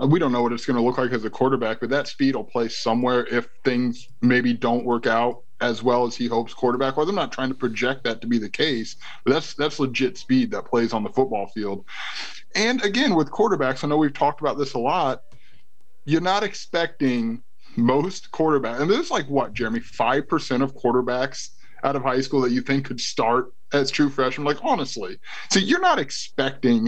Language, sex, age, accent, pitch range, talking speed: English, male, 20-39, American, 120-150 Hz, 220 wpm